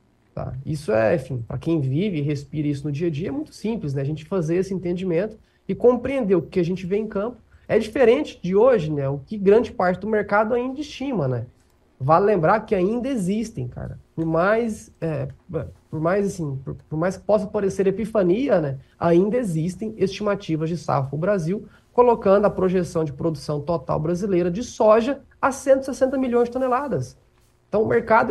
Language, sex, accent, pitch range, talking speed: Portuguese, male, Brazilian, 155-215 Hz, 190 wpm